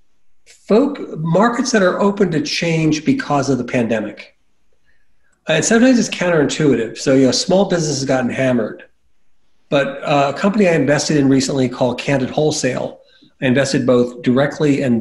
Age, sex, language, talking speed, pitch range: 50-69, male, English, 155 wpm, 130-175 Hz